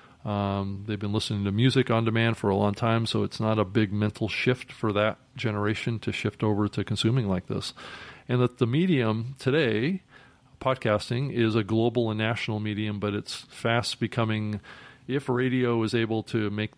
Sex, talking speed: male, 180 wpm